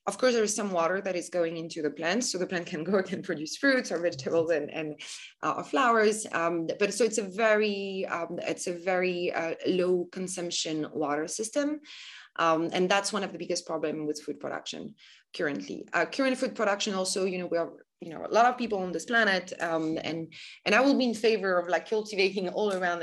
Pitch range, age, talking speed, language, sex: 165-205 Hz, 20-39, 215 wpm, English, female